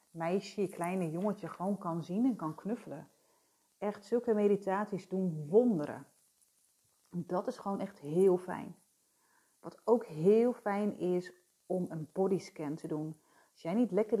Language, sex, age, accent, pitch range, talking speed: Dutch, female, 30-49, Dutch, 175-230 Hz, 150 wpm